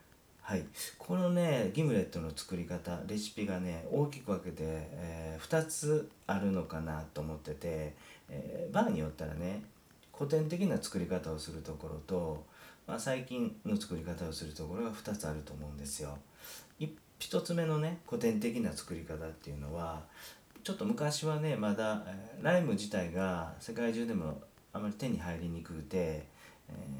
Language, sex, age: Japanese, male, 40-59